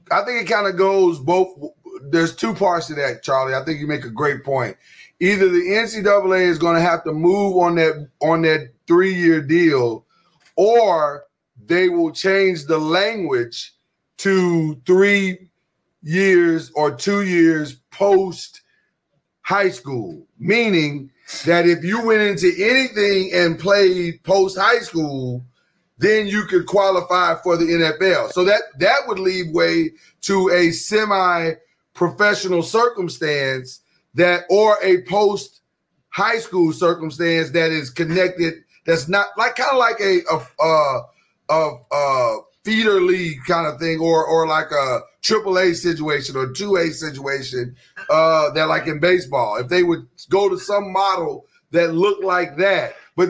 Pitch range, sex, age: 160-200 Hz, male, 40-59